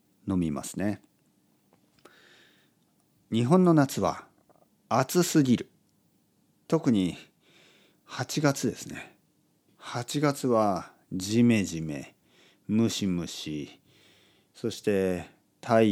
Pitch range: 90-145 Hz